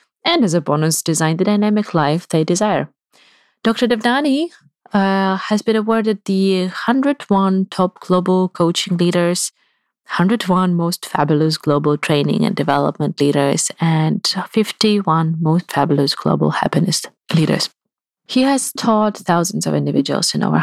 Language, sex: English, female